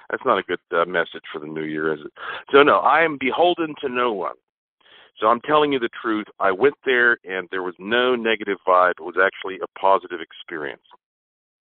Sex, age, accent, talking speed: male, 40-59, American, 210 wpm